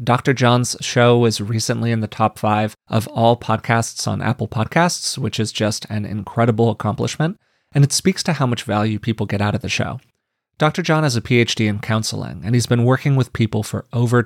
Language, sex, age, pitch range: English, male, 30-49, 110-135 Hz